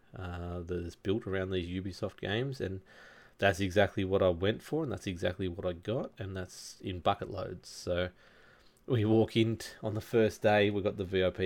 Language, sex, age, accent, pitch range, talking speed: English, male, 20-39, Australian, 90-110 Hz, 205 wpm